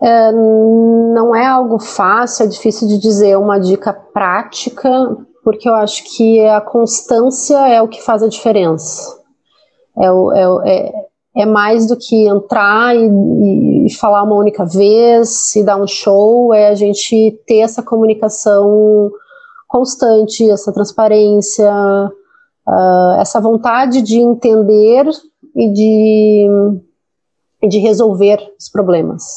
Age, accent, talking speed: 30-49, Brazilian, 120 wpm